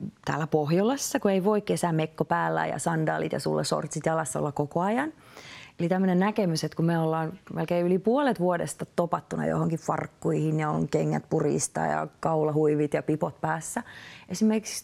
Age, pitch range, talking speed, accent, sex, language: 30-49, 160-200 Hz, 165 wpm, native, female, Finnish